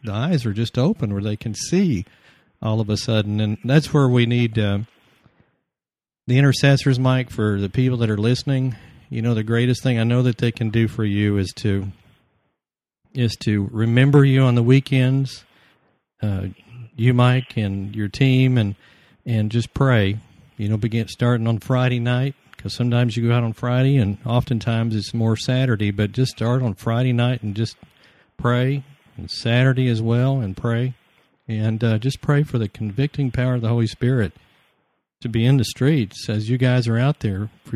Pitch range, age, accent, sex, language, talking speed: 110-130 Hz, 50-69, American, male, English, 185 wpm